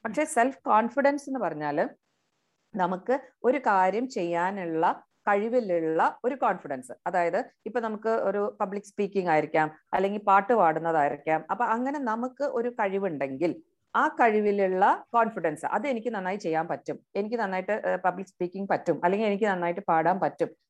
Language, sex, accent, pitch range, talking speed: Malayalam, female, native, 180-240 Hz, 130 wpm